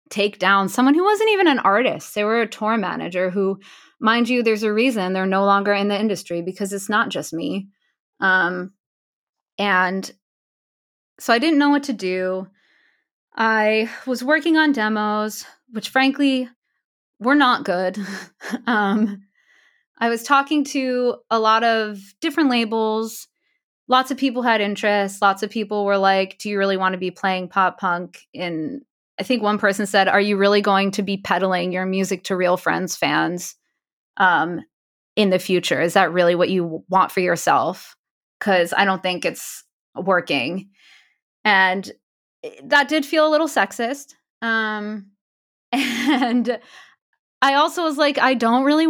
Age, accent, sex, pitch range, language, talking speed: 20-39, American, female, 195-255 Hz, English, 160 wpm